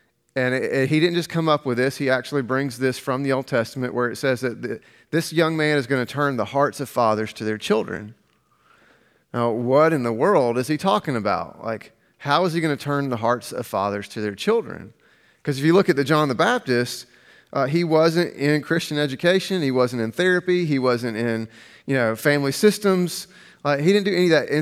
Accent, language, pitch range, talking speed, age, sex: American, English, 120-160 Hz, 220 wpm, 30-49, male